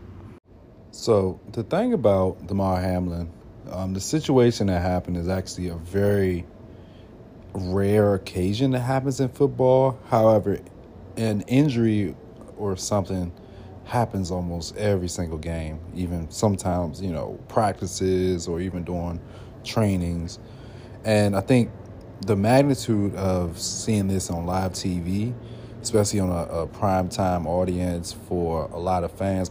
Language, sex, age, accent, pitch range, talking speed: English, male, 30-49, American, 90-110 Hz, 125 wpm